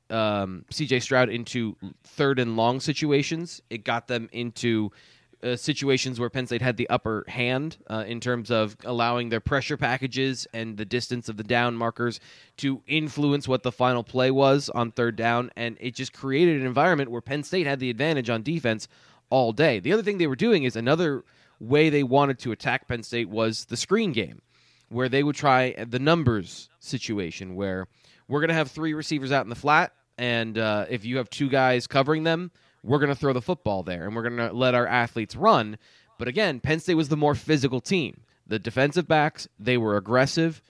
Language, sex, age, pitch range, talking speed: English, male, 20-39, 115-150 Hz, 205 wpm